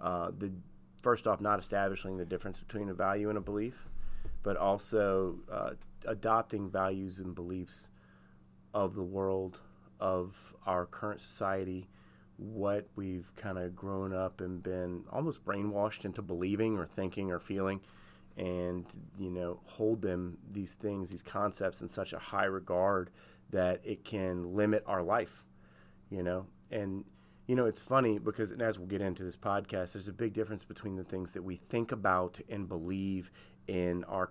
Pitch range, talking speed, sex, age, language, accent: 90-105 Hz, 165 wpm, male, 30-49, English, American